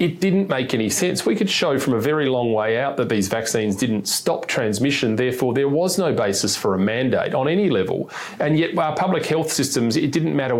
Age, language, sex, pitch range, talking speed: 30-49, English, male, 105-135 Hz, 225 wpm